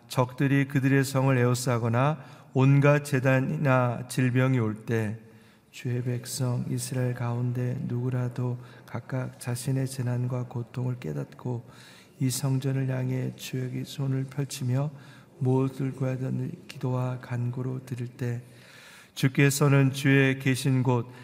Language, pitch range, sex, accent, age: Korean, 125-140 Hz, male, native, 40-59